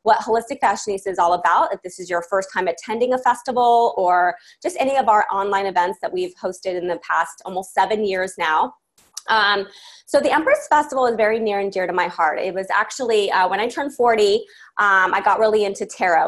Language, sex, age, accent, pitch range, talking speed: English, female, 20-39, American, 195-265 Hz, 220 wpm